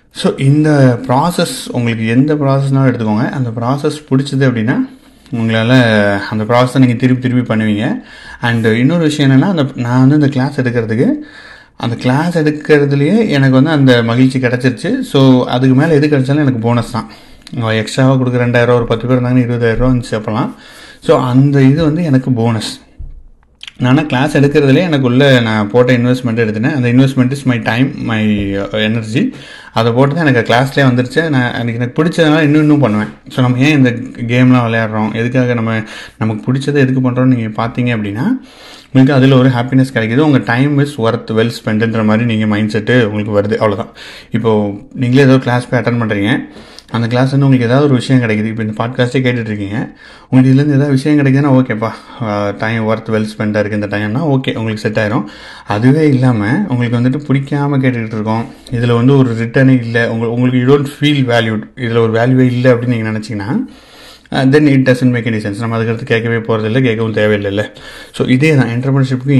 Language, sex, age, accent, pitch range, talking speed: Tamil, male, 30-49, native, 115-135 Hz, 170 wpm